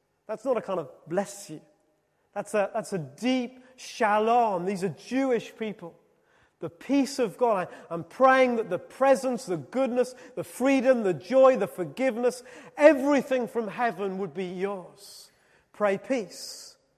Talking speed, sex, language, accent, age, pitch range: 150 wpm, male, English, British, 30-49, 185-265 Hz